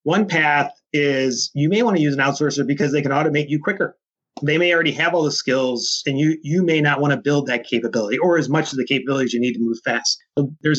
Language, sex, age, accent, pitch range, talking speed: English, male, 30-49, American, 130-160 Hz, 255 wpm